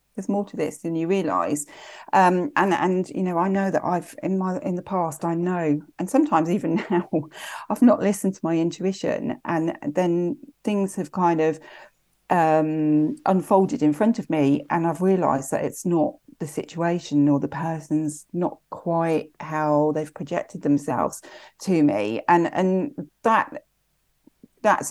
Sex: female